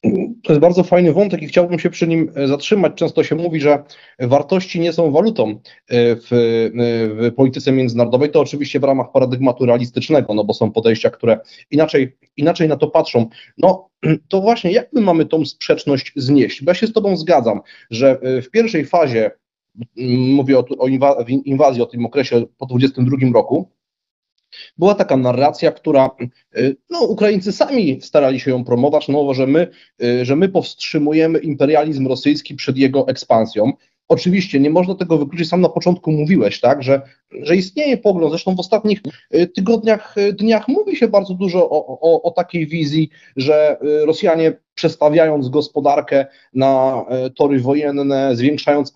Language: Polish